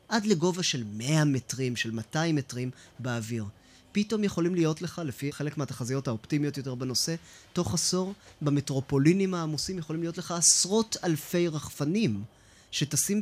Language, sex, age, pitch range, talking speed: Hebrew, male, 20-39, 125-170 Hz, 135 wpm